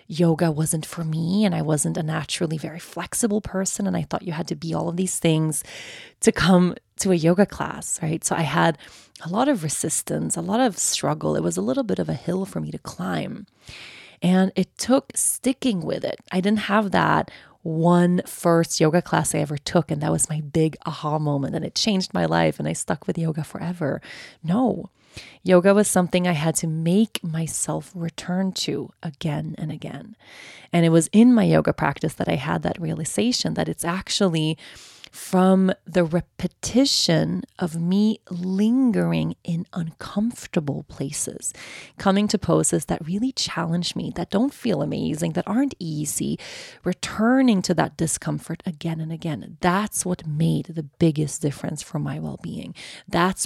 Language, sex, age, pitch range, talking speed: English, female, 30-49, 160-195 Hz, 175 wpm